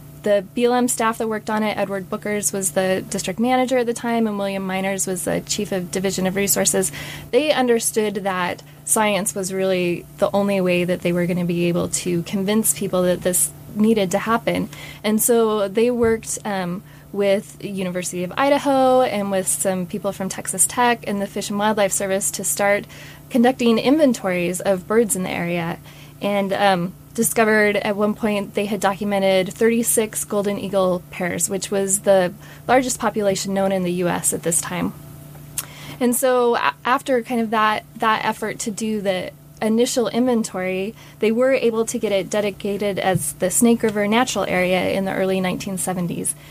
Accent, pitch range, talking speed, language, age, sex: American, 185-225 Hz, 175 wpm, English, 20-39, female